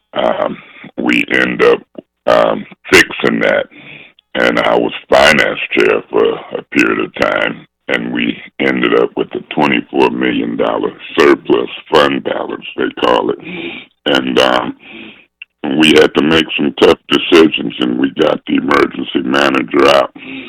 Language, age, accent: English, 60-79, American